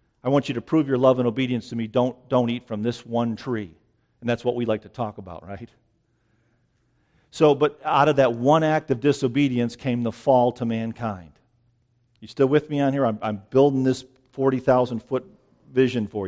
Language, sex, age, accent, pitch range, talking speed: English, male, 50-69, American, 120-145 Hz, 205 wpm